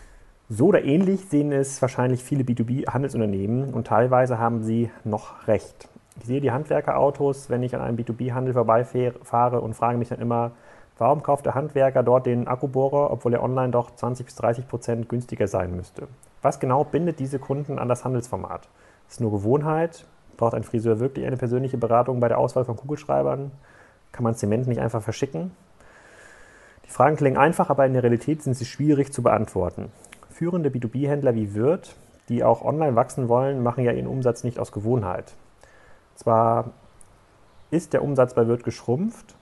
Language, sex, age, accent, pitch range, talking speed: German, male, 40-59, German, 115-135 Hz, 170 wpm